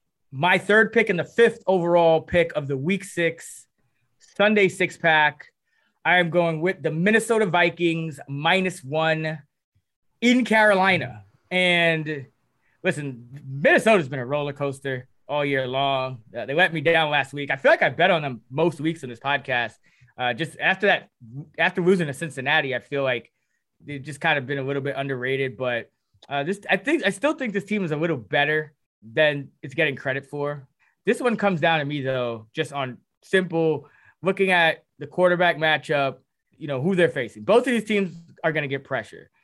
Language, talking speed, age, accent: English, 185 wpm, 20-39, American